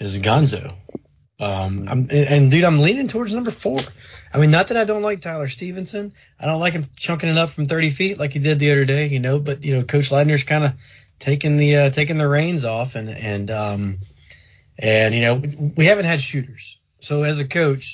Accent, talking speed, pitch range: American, 220 wpm, 115-145 Hz